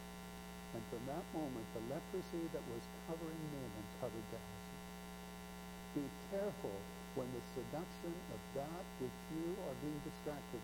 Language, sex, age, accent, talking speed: English, male, 60-79, American, 140 wpm